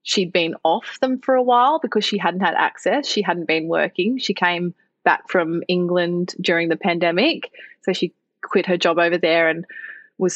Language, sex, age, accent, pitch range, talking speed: English, female, 20-39, Australian, 170-190 Hz, 190 wpm